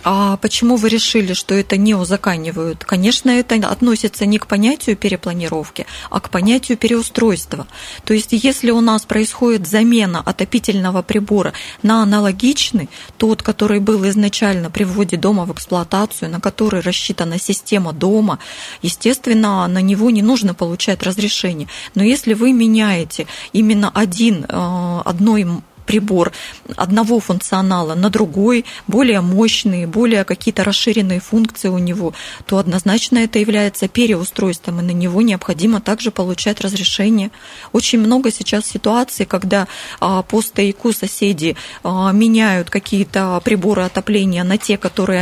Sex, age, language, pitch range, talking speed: female, 20-39, Russian, 185-220 Hz, 130 wpm